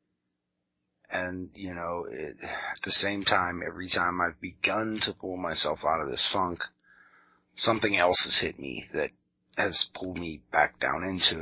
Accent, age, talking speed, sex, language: American, 30-49, 165 wpm, male, English